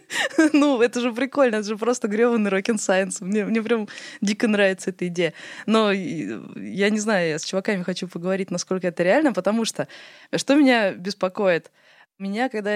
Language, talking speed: Russian, 160 wpm